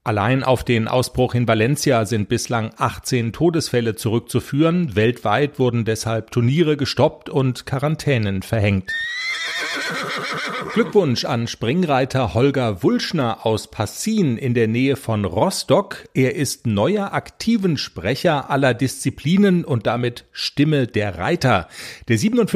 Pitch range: 115-165 Hz